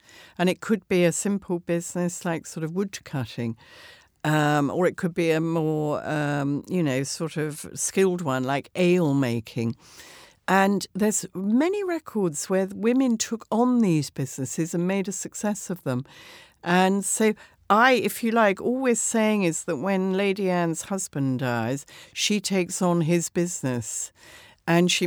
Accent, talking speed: British, 160 wpm